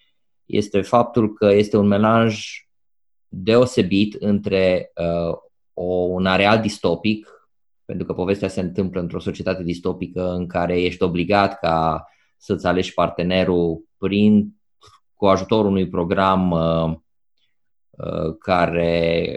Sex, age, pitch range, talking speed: male, 20-39, 90-110 Hz, 115 wpm